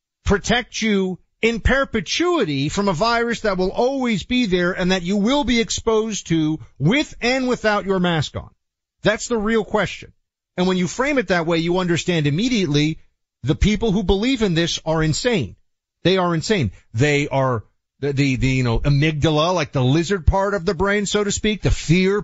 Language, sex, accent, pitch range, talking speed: English, male, American, 120-190 Hz, 190 wpm